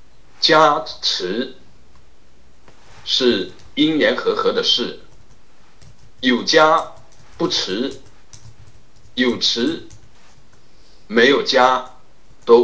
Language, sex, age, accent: Chinese, male, 60-79, native